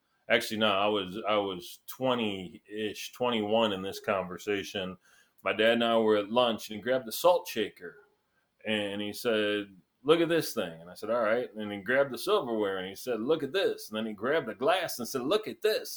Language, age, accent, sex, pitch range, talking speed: English, 30-49, American, male, 105-125 Hz, 220 wpm